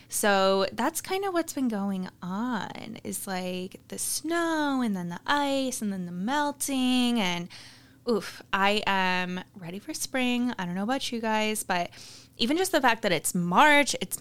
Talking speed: 175 wpm